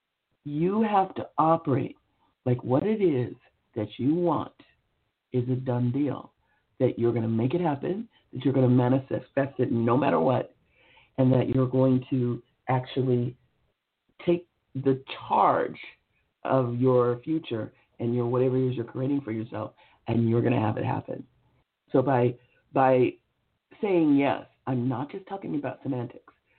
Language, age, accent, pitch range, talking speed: English, 50-69, American, 125-170 Hz, 160 wpm